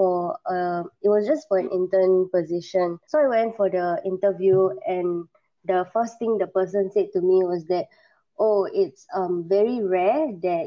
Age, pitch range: 20-39, 180-220 Hz